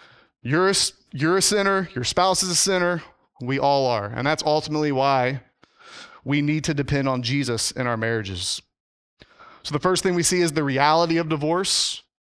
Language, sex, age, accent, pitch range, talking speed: English, male, 30-49, American, 130-170 Hz, 175 wpm